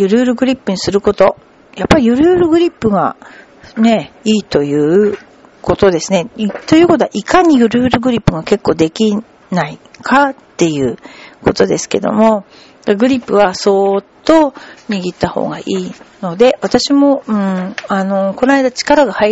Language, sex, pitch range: Japanese, female, 185-245 Hz